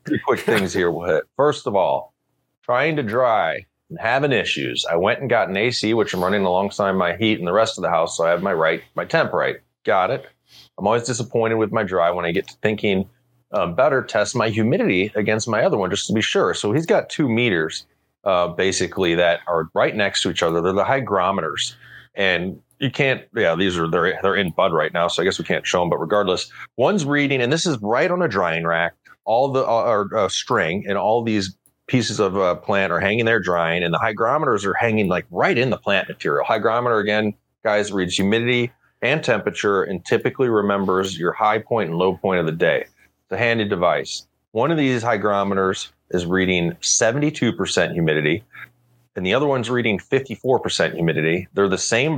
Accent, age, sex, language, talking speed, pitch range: American, 30-49, male, English, 210 wpm, 90-120 Hz